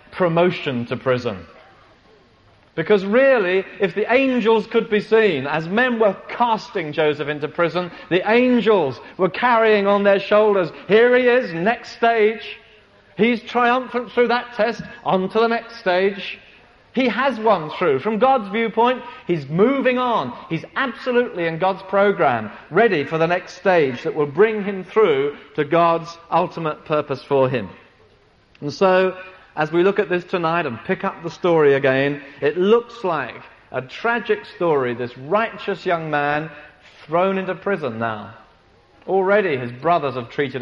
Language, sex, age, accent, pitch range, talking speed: English, male, 40-59, British, 145-215 Hz, 155 wpm